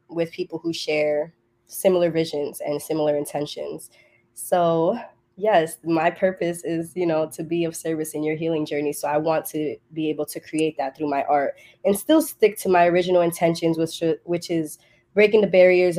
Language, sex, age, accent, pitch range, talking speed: English, female, 20-39, American, 155-190 Hz, 185 wpm